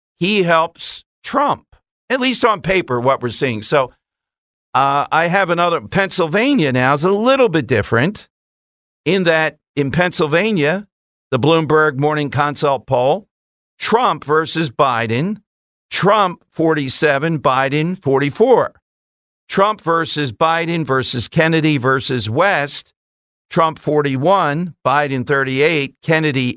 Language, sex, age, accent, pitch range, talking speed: English, male, 50-69, American, 130-170 Hz, 115 wpm